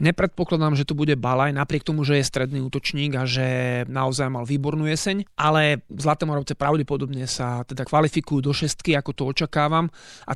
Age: 30-49